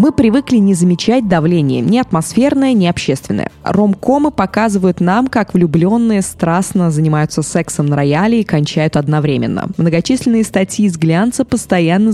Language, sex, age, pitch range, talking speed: Russian, female, 20-39, 155-210 Hz, 140 wpm